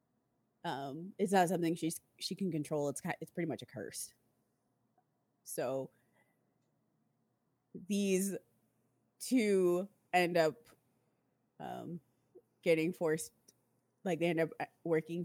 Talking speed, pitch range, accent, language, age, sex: 105 wpm, 145-185 Hz, American, English, 20-39, female